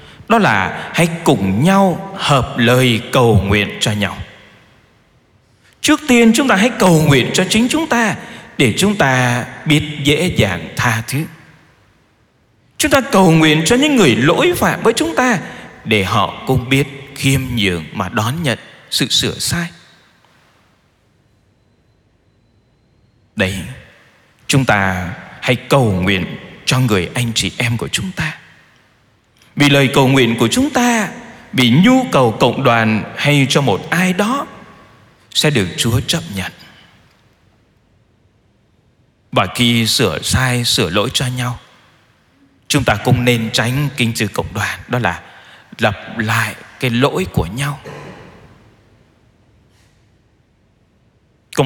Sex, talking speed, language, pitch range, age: male, 135 wpm, Vietnamese, 110-150 Hz, 20-39